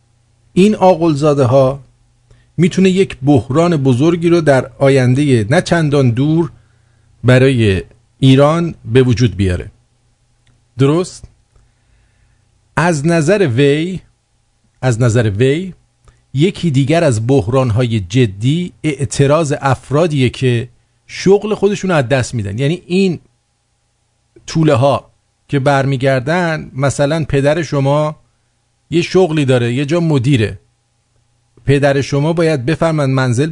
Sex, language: male, English